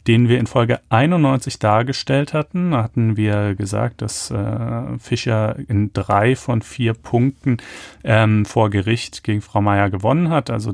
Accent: German